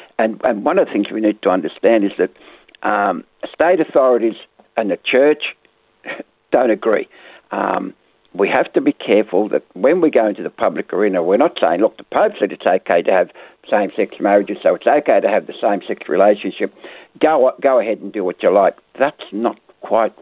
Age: 60-79